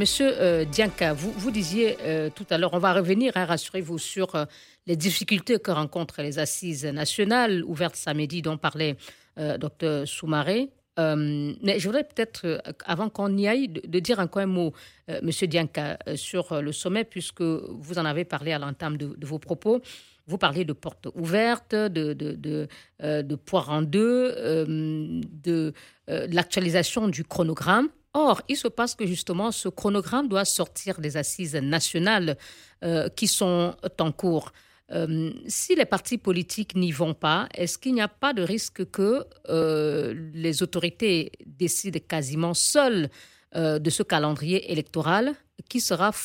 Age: 50-69